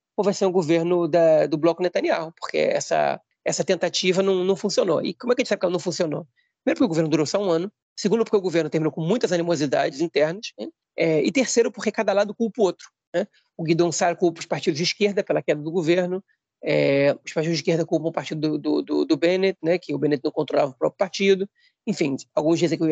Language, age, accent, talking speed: Portuguese, 30-49, Brazilian, 245 wpm